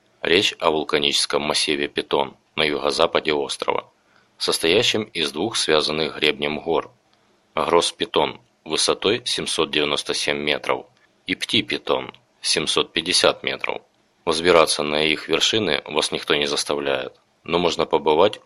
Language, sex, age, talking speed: Russian, male, 20-39, 115 wpm